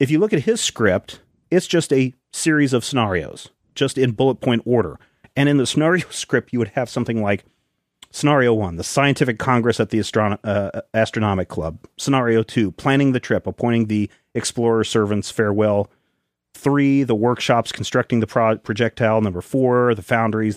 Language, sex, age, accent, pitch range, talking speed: English, male, 40-59, American, 105-135 Hz, 165 wpm